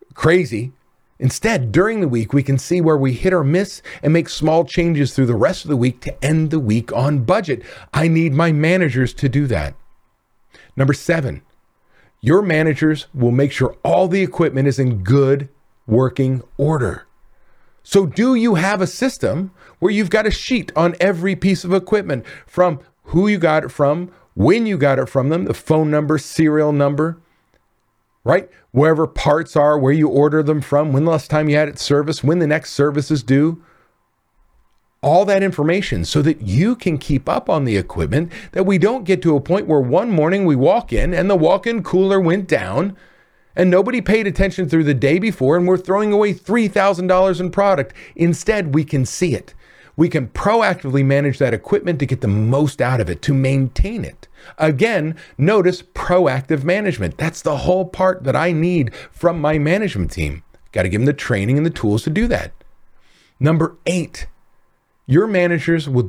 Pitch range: 135-180 Hz